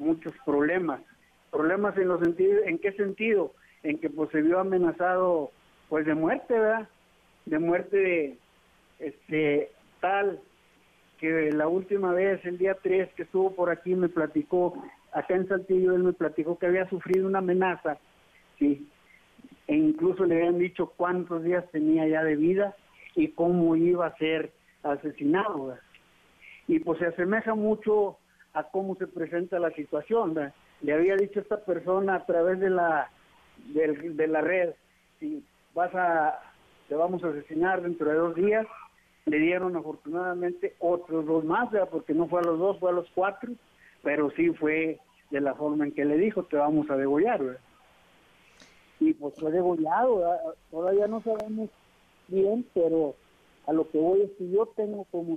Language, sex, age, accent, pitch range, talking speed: Spanish, male, 50-69, Mexican, 160-195 Hz, 165 wpm